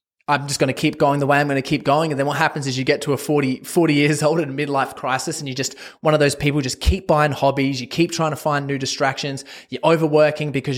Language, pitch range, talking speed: English, 130-165 Hz, 290 wpm